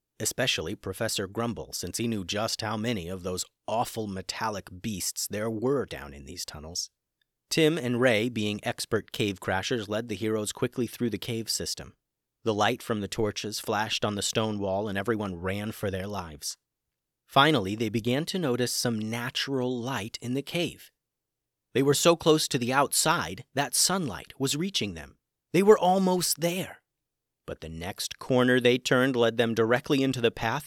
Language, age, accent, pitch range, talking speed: English, 30-49, American, 110-135 Hz, 175 wpm